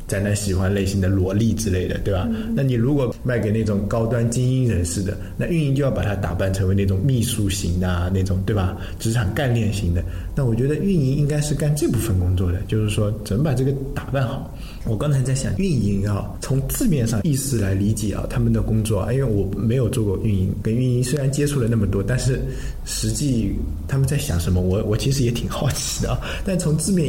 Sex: male